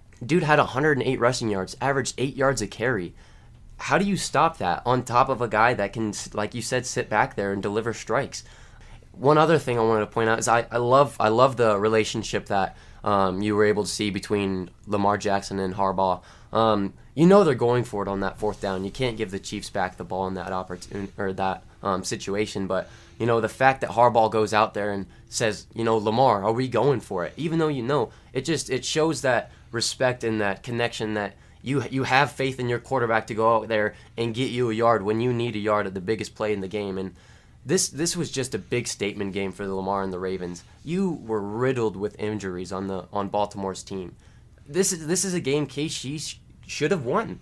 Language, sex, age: English, male, 20-39